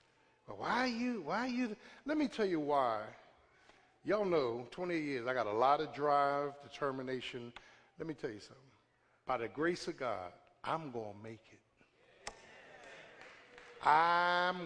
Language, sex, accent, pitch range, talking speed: English, male, American, 160-220 Hz, 155 wpm